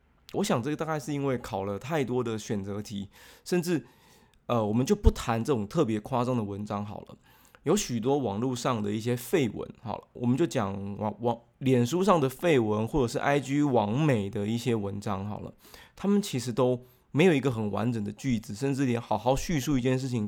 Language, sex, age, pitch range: Chinese, male, 20-39, 105-130 Hz